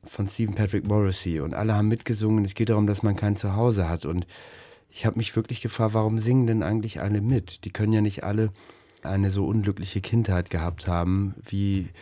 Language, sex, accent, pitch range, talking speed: German, male, German, 90-110 Hz, 200 wpm